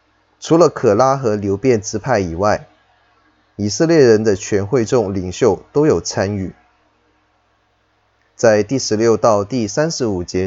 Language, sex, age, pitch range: Chinese, male, 20-39, 100-130 Hz